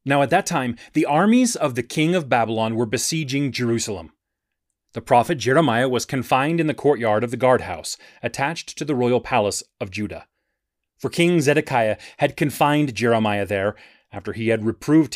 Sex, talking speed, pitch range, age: male, 170 wpm, 120-195 Hz, 30-49